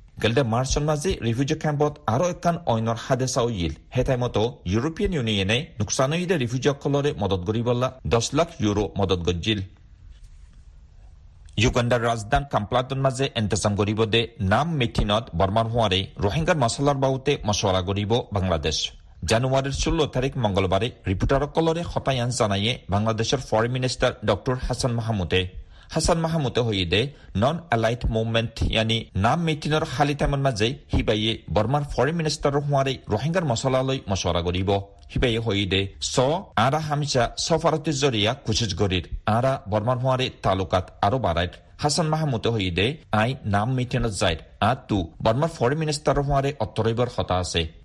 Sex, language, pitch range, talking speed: male, Bengali, 100-140 Hz, 105 wpm